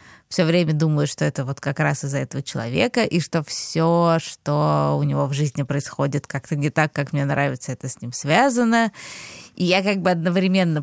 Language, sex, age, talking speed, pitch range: Russian, female, 20-39, 195 wpm, 145-170 Hz